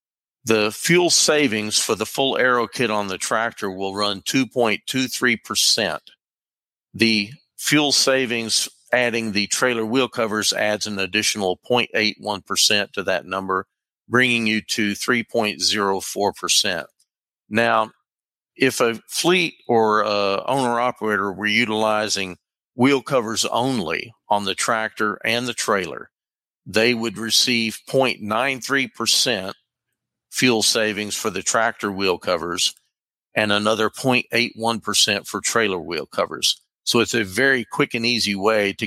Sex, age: male, 50-69